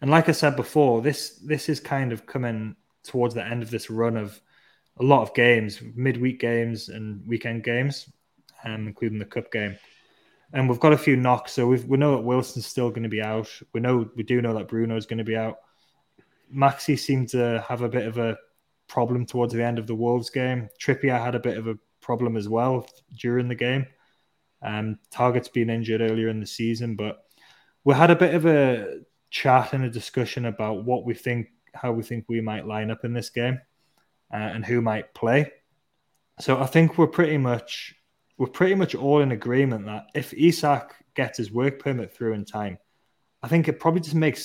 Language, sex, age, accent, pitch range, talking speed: English, male, 20-39, British, 115-135 Hz, 210 wpm